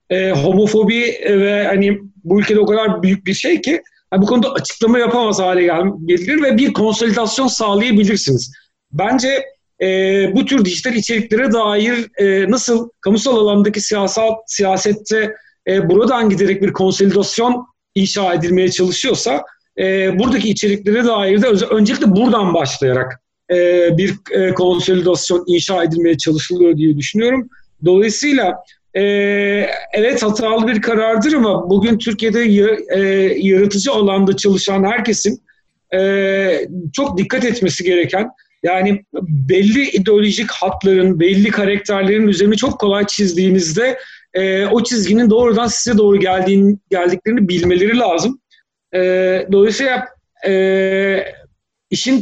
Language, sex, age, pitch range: Turkish, male, 40-59, 190-225 Hz